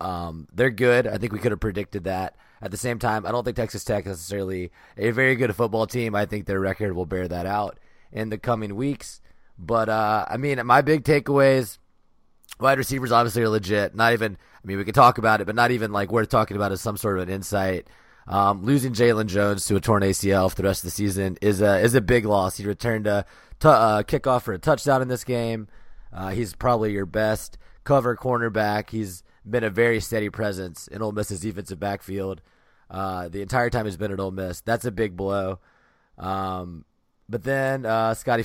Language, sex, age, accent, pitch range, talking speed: English, male, 30-49, American, 95-120 Hz, 220 wpm